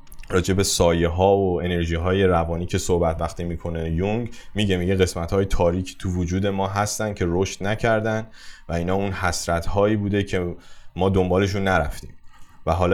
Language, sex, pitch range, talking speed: Persian, male, 85-100 Hz, 170 wpm